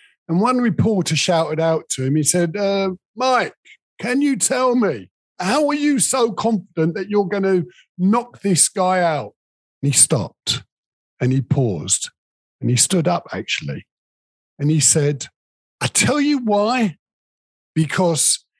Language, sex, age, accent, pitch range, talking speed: English, male, 50-69, British, 125-190 Hz, 150 wpm